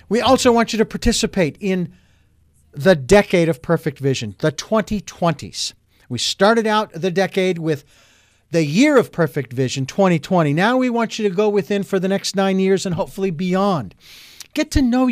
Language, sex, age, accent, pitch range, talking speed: English, male, 50-69, American, 150-210 Hz, 175 wpm